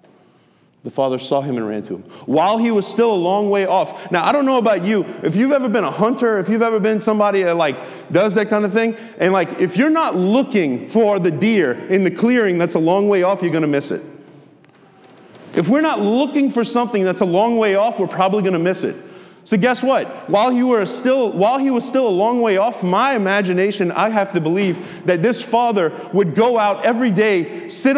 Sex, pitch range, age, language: male, 180-235 Hz, 30-49, English